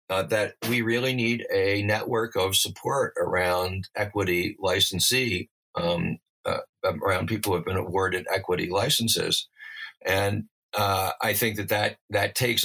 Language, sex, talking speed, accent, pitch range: English, male, 140 wpm, American, 90-110 Hz